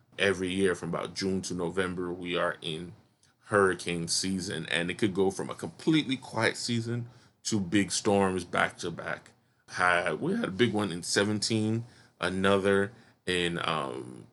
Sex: male